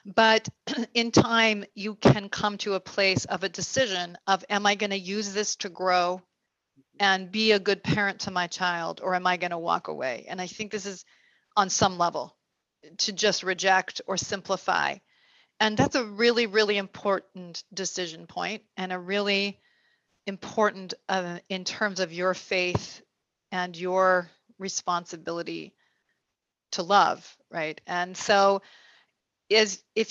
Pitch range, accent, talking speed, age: 185-215 Hz, American, 155 wpm, 40-59